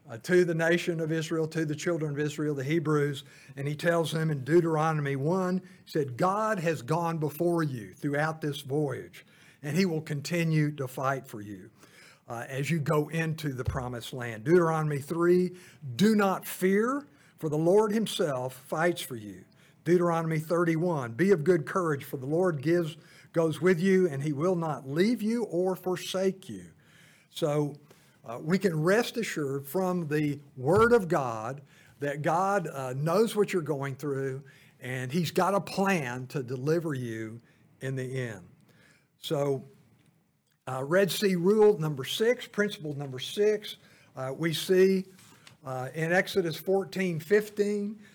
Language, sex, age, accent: English, male, 50-69, American